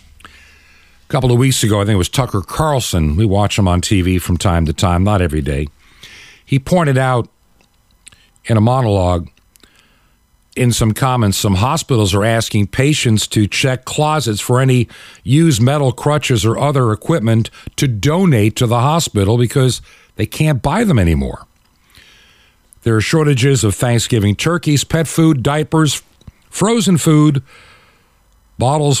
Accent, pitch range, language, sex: American, 100-145 Hz, English, male